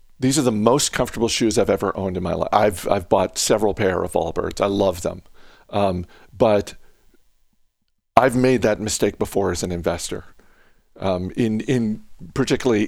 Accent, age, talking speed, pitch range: American, 50-69, 170 wpm, 95-125 Hz